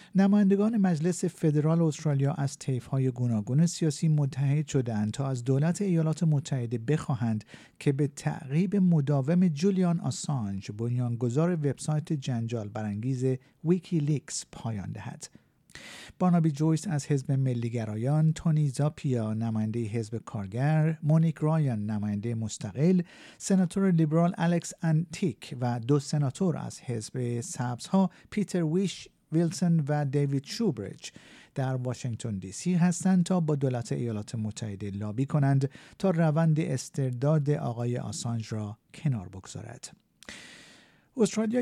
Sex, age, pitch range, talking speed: male, 50-69, 125-165 Hz, 115 wpm